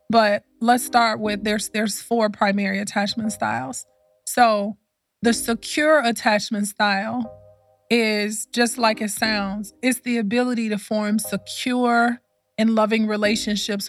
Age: 20-39